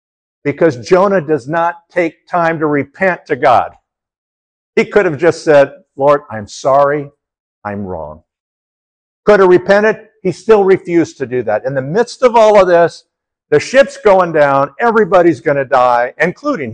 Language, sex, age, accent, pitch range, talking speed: English, male, 60-79, American, 130-185 Hz, 160 wpm